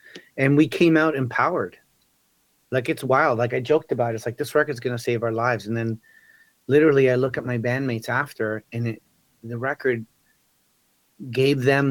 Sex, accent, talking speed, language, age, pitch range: male, American, 180 wpm, English, 30-49, 115-135 Hz